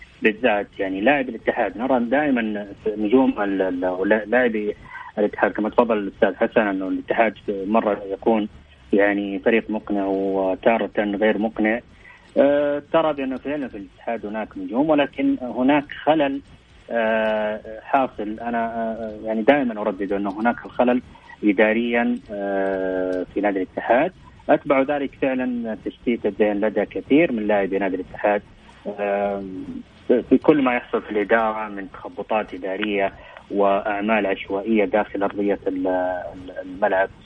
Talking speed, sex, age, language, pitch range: 110 wpm, male, 30-49, English, 100-120 Hz